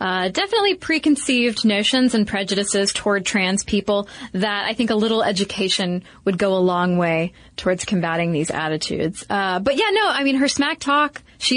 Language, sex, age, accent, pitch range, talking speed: English, female, 30-49, American, 195-250 Hz, 175 wpm